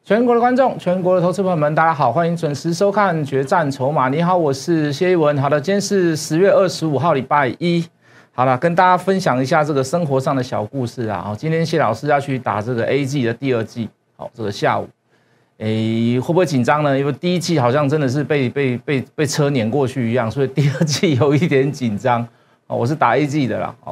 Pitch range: 125-165 Hz